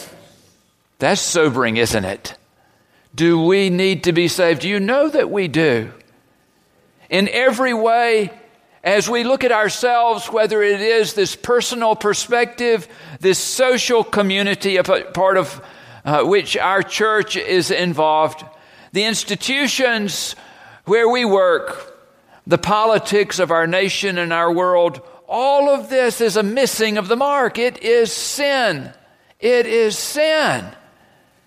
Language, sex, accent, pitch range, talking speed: English, male, American, 180-255 Hz, 135 wpm